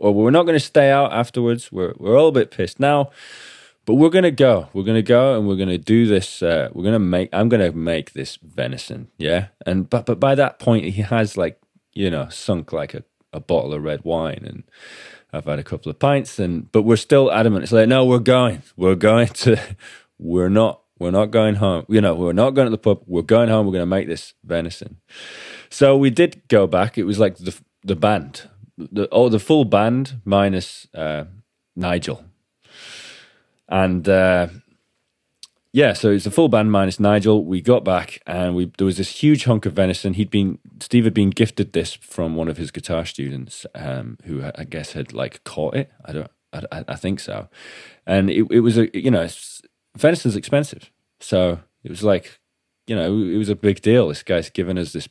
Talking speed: 215 wpm